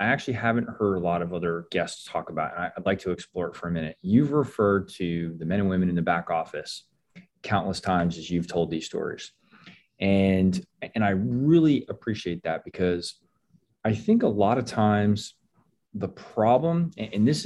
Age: 30-49